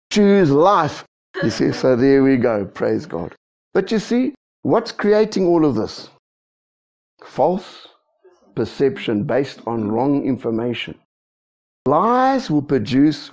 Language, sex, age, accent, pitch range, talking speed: English, male, 60-79, South African, 130-185 Hz, 120 wpm